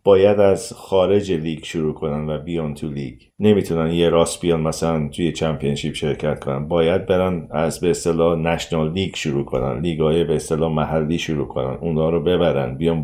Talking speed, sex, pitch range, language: 170 wpm, male, 80-100 Hz, Persian